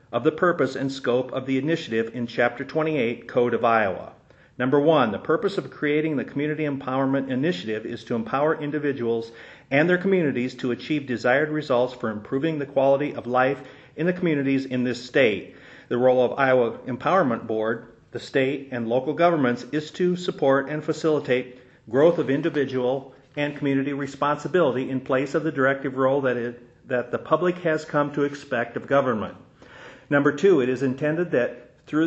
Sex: male